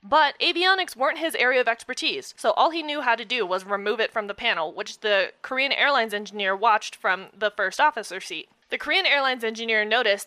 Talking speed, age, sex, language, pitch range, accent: 210 wpm, 20-39, female, English, 215-305 Hz, American